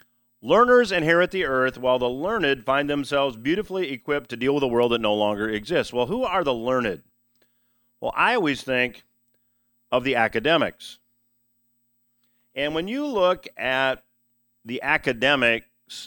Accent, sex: American, male